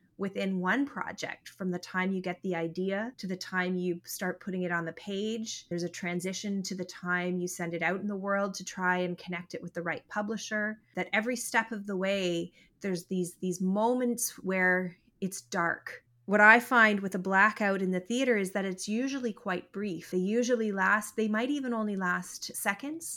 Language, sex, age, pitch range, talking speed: English, female, 30-49, 180-215 Hz, 205 wpm